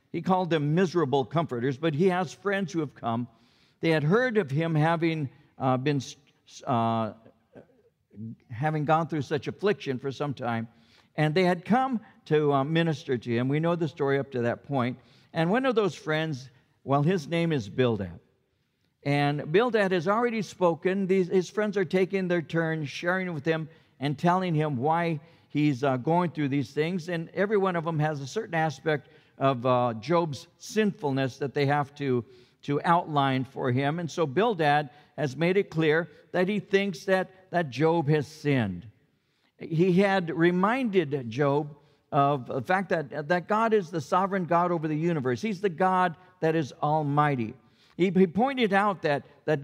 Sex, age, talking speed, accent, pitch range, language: male, 60-79, 175 wpm, American, 140-185 Hz, English